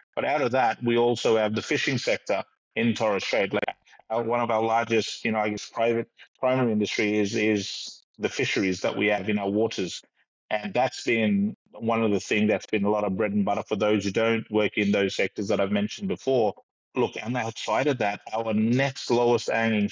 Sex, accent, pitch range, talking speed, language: male, Australian, 105-115 Hz, 215 wpm, English